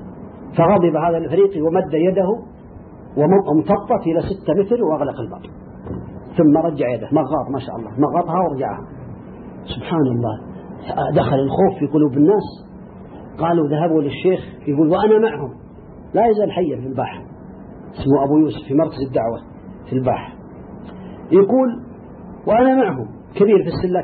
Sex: male